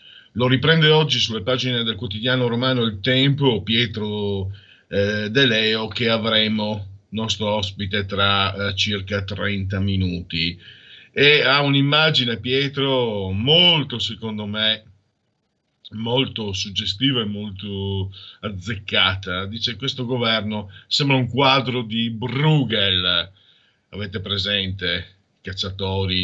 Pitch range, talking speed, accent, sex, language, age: 95-120 Hz, 105 wpm, native, male, Italian, 50-69